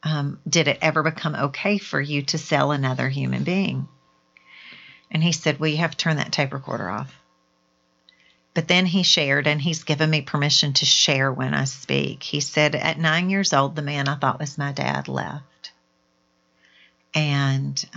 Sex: female